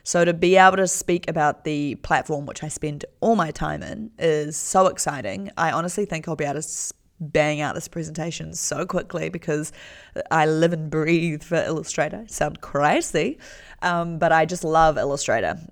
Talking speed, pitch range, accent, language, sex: 180 wpm, 155-185 Hz, Australian, English, female